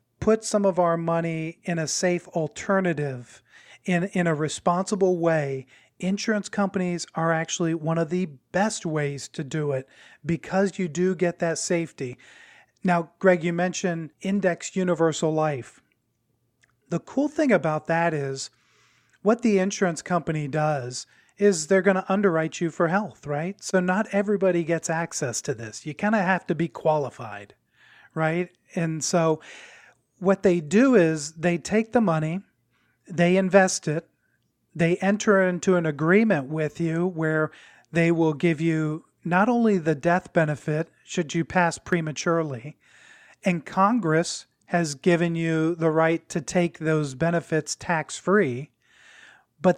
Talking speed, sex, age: 145 wpm, male, 40-59